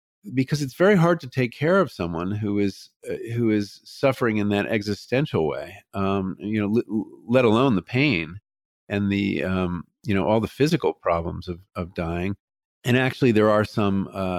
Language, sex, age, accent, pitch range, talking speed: English, male, 50-69, American, 100-140 Hz, 185 wpm